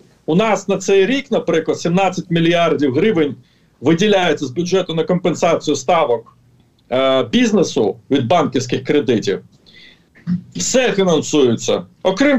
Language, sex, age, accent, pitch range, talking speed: Ukrainian, male, 40-59, native, 160-230 Hz, 110 wpm